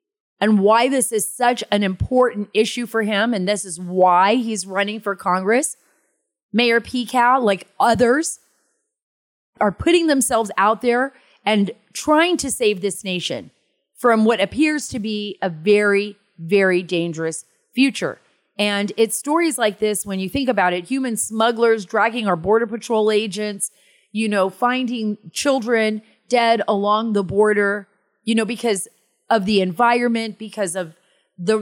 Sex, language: female, English